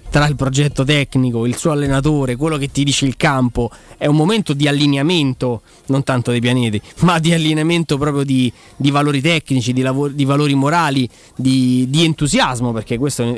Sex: male